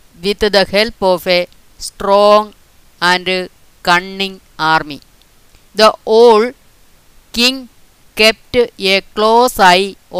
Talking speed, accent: 95 wpm, native